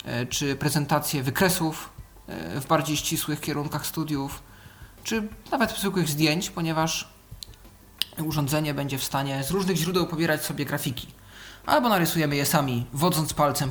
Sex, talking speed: male, 130 wpm